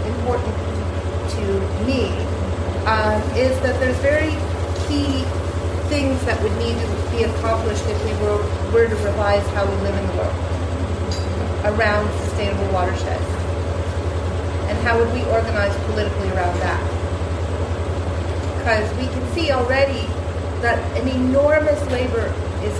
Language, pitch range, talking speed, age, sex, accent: English, 85-95 Hz, 130 wpm, 40-59, female, American